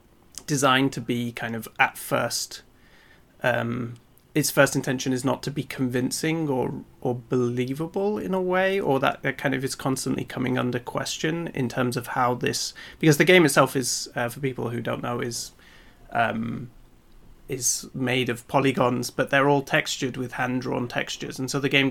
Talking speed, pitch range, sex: 180 wpm, 125-140 Hz, male